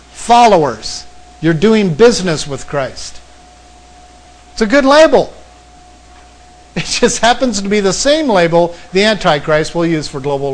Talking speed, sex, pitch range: 135 wpm, male, 140-220 Hz